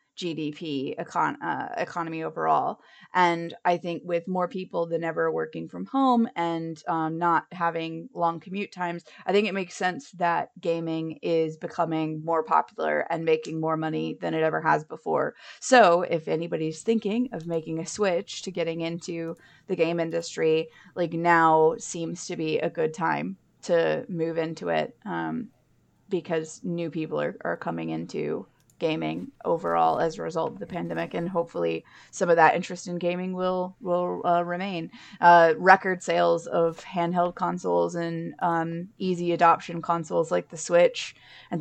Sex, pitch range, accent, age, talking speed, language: female, 160-180 Hz, American, 20-39, 160 wpm, English